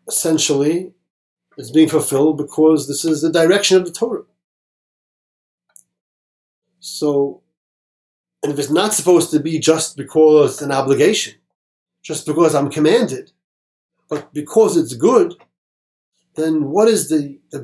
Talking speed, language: 130 wpm, English